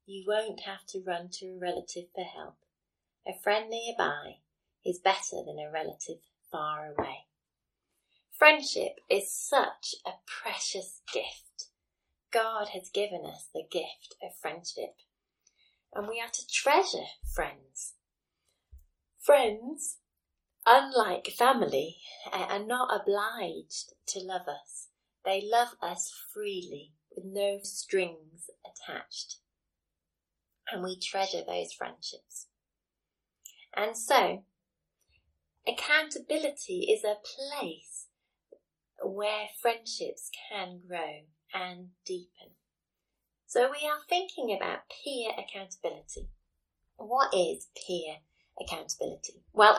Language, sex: English, female